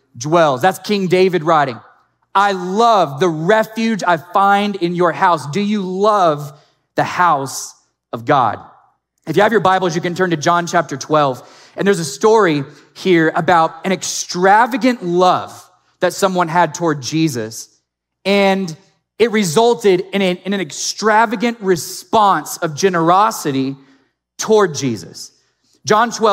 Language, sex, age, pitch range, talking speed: English, male, 30-49, 150-195 Hz, 135 wpm